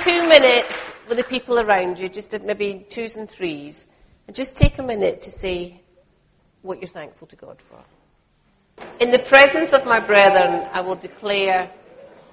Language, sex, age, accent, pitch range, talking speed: English, female, 40-59, British, 185-255 Hz, 165 wpm